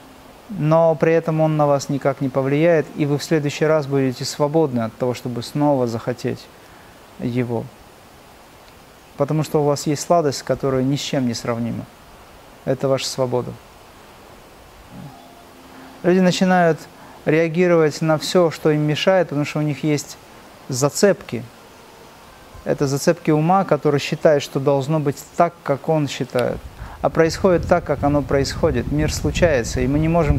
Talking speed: 150 wpm